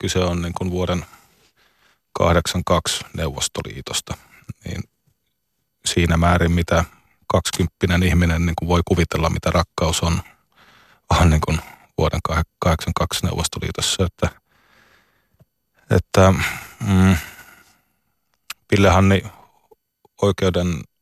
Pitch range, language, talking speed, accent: 85-95 Hz, Finnish, 90 wpm, native